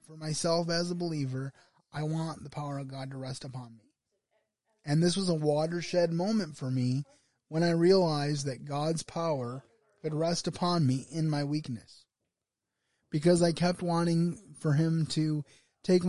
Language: English